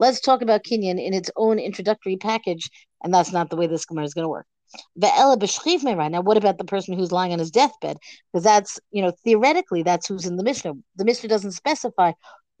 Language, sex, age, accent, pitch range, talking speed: English, female, 50-69, American, 185-230 Hz, 205 wpm